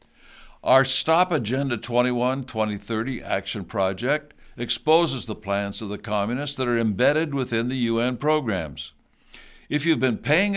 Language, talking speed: English, 130 wpm